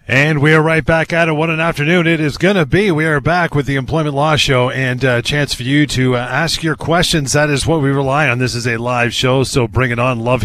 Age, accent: 30-49, American